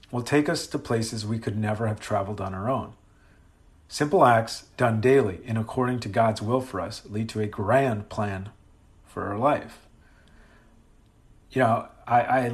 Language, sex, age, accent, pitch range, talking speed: English, male, 40-59, American, 105-120 Hz, 170 wpm